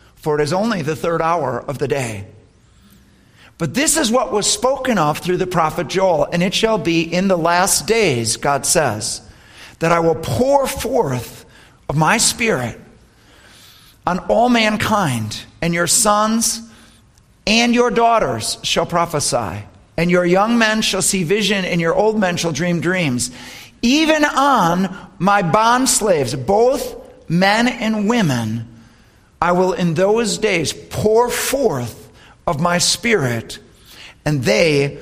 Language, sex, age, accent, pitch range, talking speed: English, male, 50-69, American, 115-185 Hz, 145 wpm